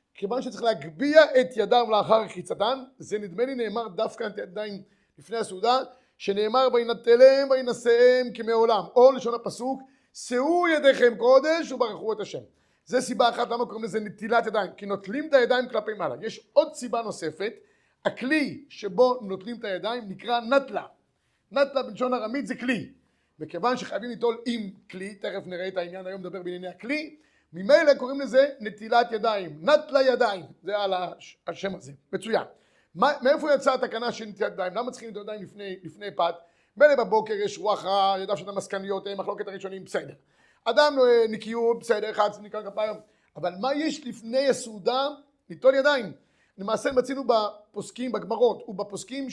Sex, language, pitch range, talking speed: male, Hebrew, 200-260 Hz, 155 wpm